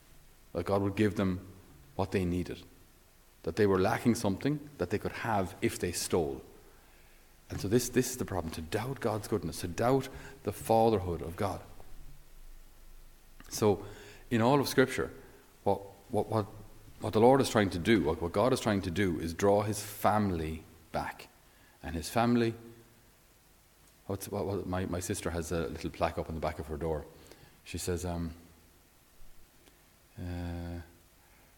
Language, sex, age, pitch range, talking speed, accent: English, male, 30-49, 85-110 Hz, 165 wpm, Irish